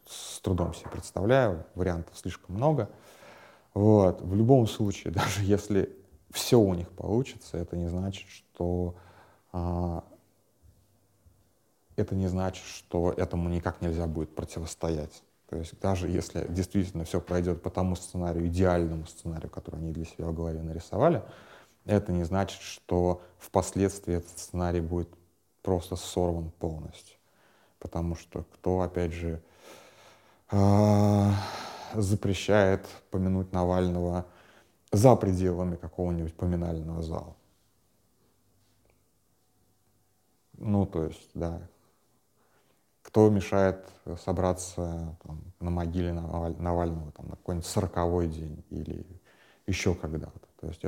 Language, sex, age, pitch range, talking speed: Russian, male, 30-49, 85-100 Hz, 110 wpm